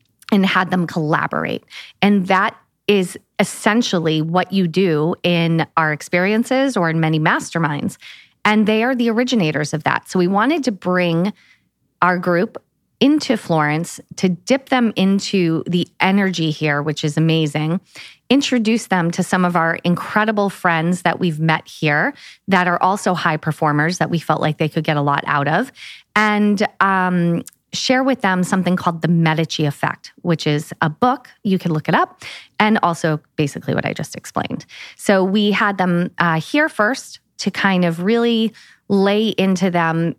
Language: English